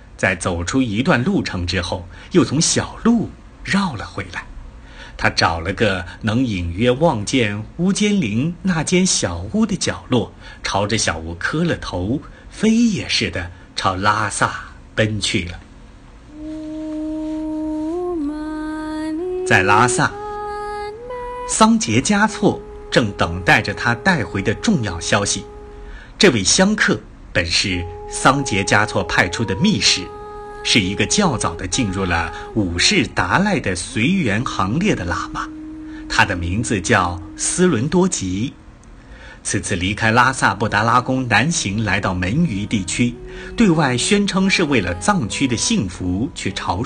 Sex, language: male, Chinese